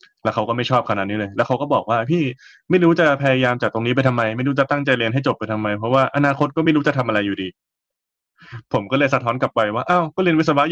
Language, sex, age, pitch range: Thai, male, 20-39, 105-135 Hz